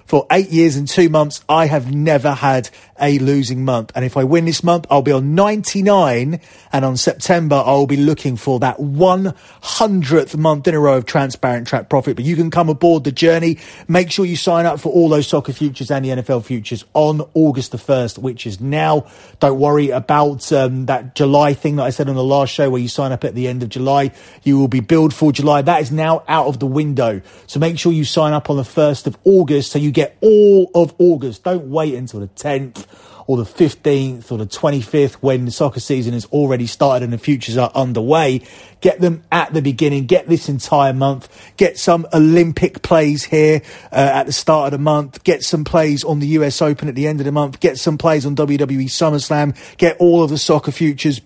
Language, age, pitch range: English, 30-49, 135-160 Hz